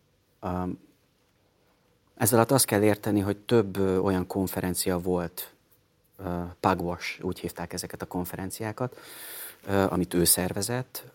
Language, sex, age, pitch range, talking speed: Hungarian, male, 30-49, 90-105 Hz, 120 wpm